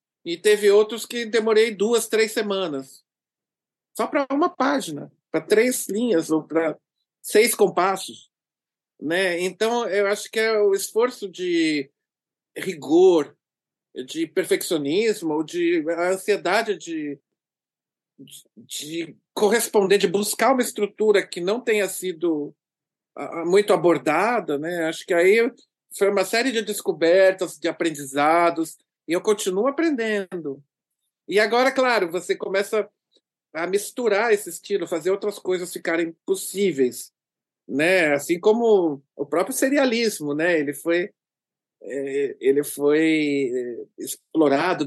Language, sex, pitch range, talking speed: Portuguese, male, 165-225 Hz, 120 wpm